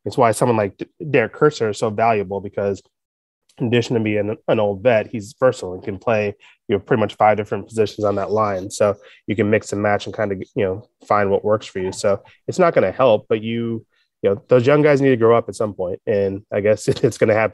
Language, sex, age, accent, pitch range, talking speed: English, male, 20-39, American, 100-110 Hz, 260 wpm